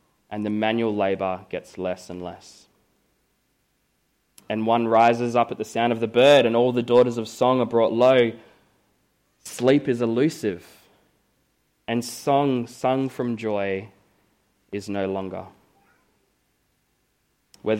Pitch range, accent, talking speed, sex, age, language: 105-125 Hz, Australian, 130 wpm, male, 20-39, English